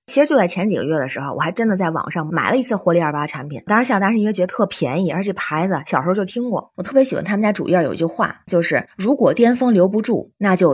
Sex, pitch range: female, 160-205 Hz